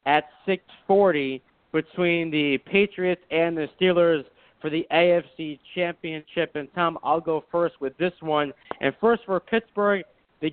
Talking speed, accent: 140 wpm, American